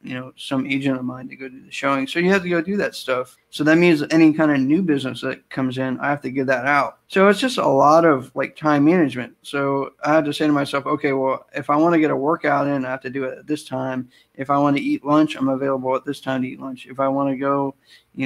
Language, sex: English, male